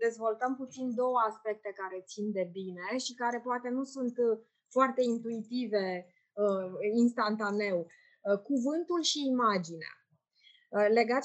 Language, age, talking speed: Romanian, 20-39, 105 wpm